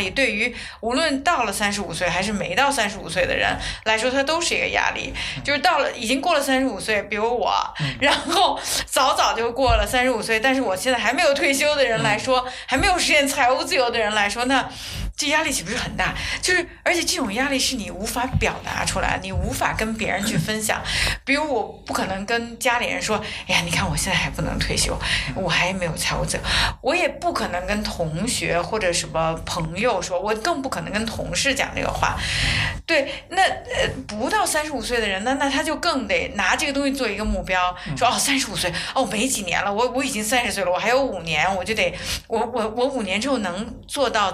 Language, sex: Chinese, female